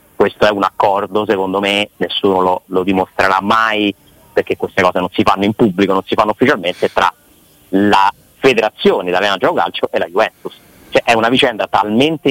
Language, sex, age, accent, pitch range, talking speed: Italian, male, 30-49, native, 95-120 Hz, 170 wpm